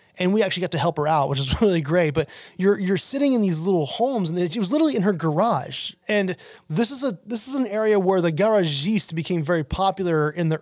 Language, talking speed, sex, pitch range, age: English, 245 wpm, male, 155-195 Hz, 20-39